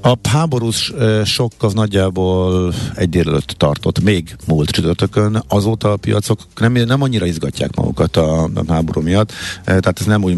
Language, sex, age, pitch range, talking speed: Hungarian, male, 50-69, 85-110 Hz, 150 wpm